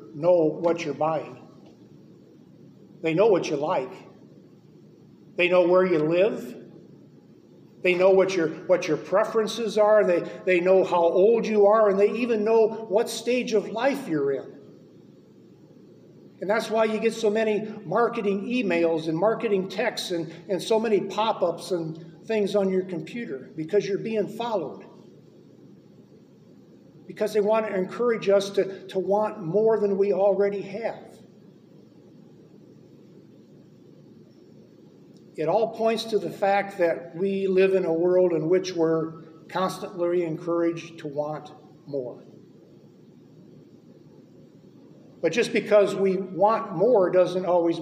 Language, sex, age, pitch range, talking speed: English, male, 50-69, 170-210 Hz, 135 wpm